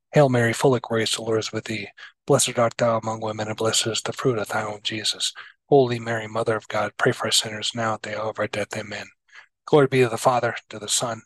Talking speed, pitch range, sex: 260 wpm, 110-125 Hz, male